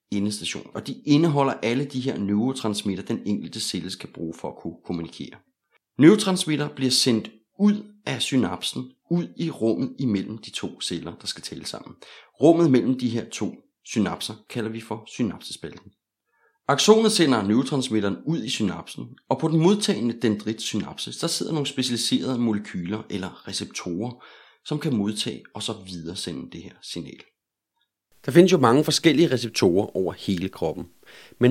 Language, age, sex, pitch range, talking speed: Danish, 30-49, male, 100-145 Hz, 155 wpm